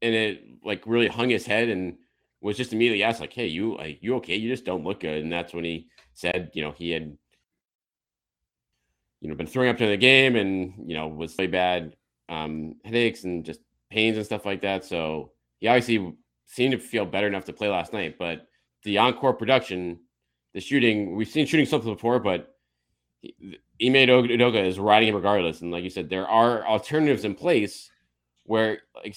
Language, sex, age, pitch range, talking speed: English, male, 30-49, 85-120 Hz, 200 wpm